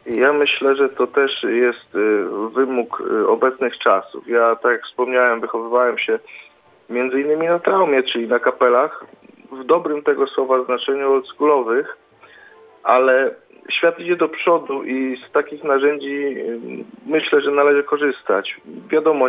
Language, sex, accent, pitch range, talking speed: Polish, male, native, 130-160 Hz, 130 wpm